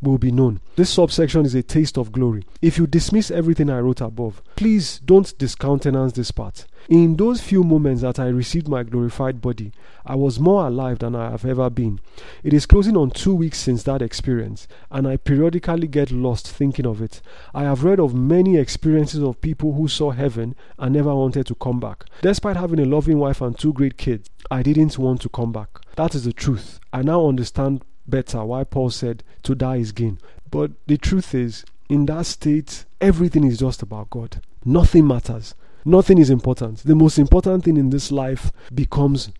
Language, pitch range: English, 120-155 Hz